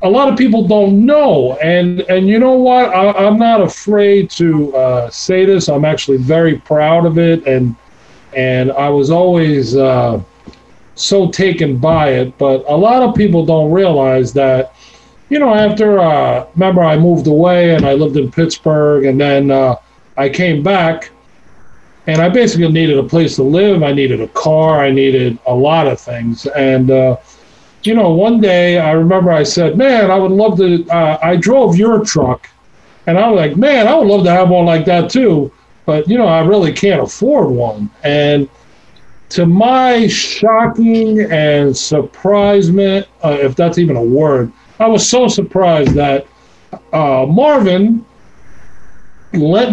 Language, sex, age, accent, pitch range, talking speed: English, male, 40-59, American, 140-195 Hz, 175 wpm